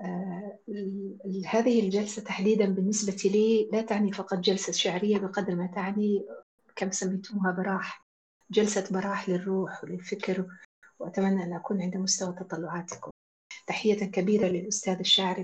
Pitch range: 185-220 Hz